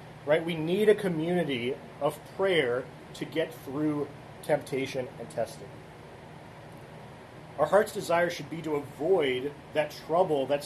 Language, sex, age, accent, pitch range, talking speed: English, male, 30-49, American, 140-175 Hz, 130 wpm